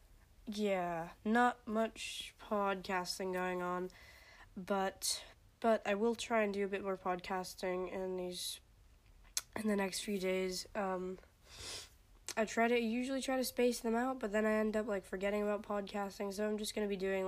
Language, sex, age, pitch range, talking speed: English, female, 10-29, 185-215 Hz, 170 wpm